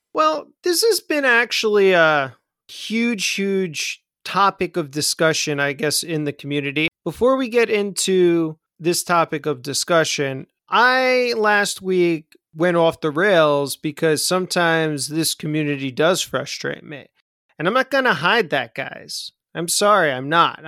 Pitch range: 155-190 Hz